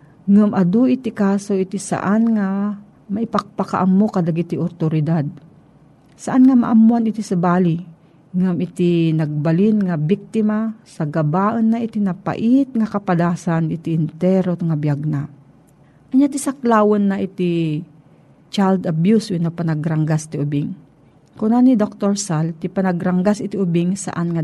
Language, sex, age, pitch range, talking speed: Filipino, female, 40-59, 160-205 Hz, 135 wpm